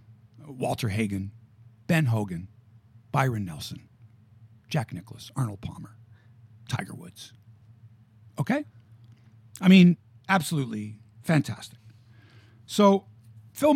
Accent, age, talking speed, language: American, 50-69, 85 wpm, English